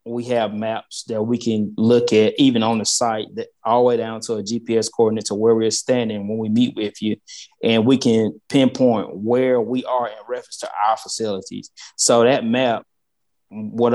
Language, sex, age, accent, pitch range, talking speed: English, male, 20-39, American, 110-125 Hz, 200 wpm